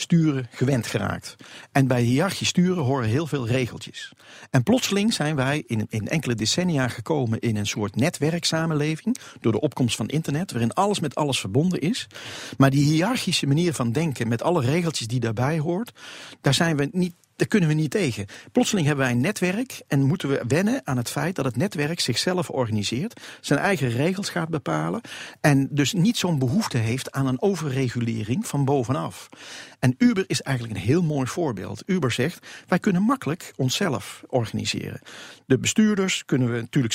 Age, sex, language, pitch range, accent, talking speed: 50-69, male, Dutch, 120-170 Hz, Dutch, 175 wpm